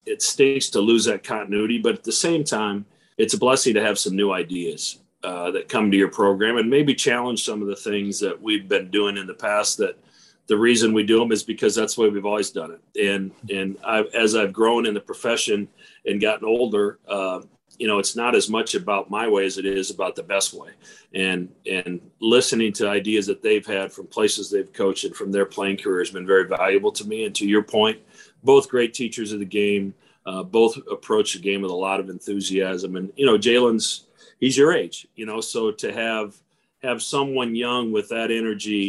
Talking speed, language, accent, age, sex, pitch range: 220 wpm, English, American, 40-59, male, 100-130 Hz